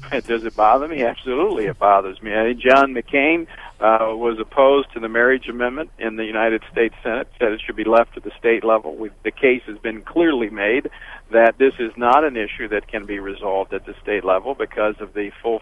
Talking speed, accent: 225 wpm, American